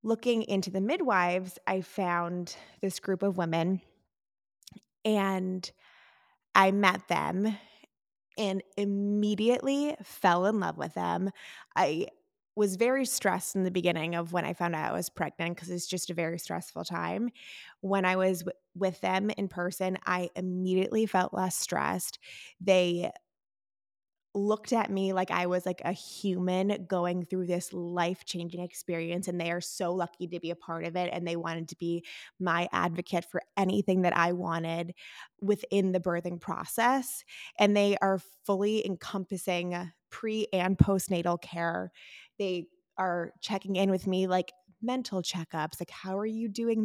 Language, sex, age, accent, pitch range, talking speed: English, female, 20-39, American, 175-205 Hz, 155 wpm